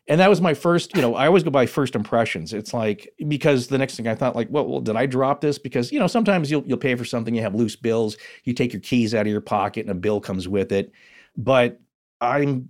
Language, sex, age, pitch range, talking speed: English, male, 40-59, 115-160 Hz, 270 wpm